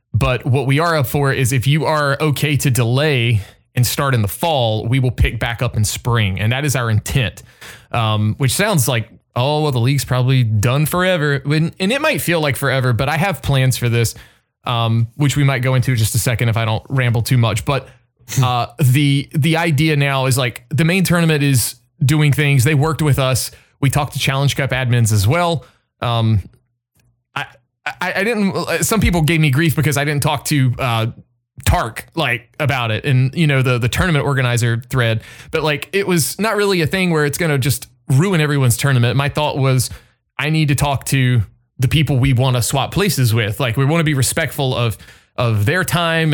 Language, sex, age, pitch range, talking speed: English, male, 20-39, 120-150 Hz, 210 wpm